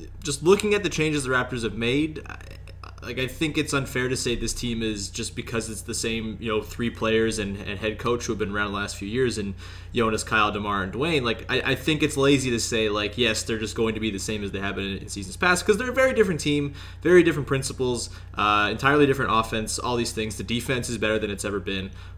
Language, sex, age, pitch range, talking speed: English, male, 20-39, 100-130 Hz, 255 wpm